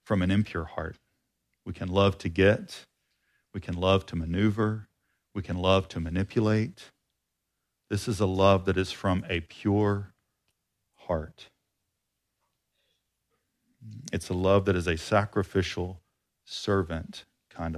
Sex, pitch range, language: male, 95-120 Hz, English